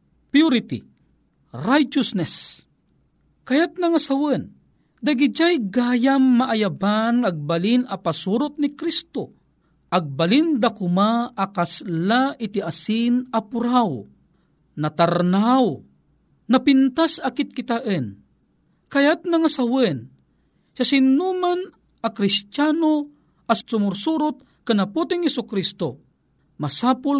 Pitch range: 185-275 Hz